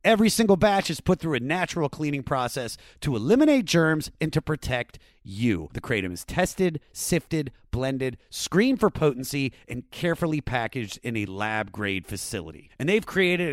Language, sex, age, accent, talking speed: English, male, 30-49, American, 160 wpm